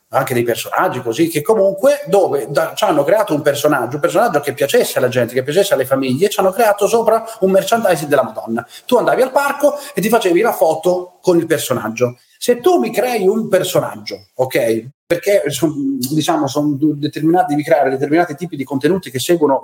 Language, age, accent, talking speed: Italian, 40-59, native, 195 wpm